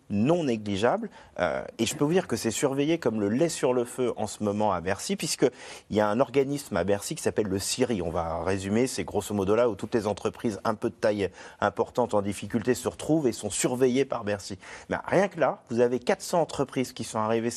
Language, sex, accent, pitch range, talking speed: French, male, French, 110-160 Hz, 235 wpm